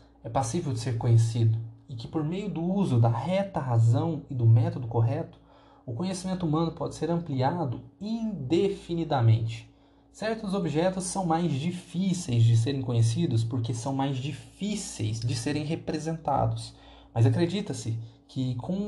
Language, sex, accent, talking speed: Portuguese, male, Brazilian, 140 wpm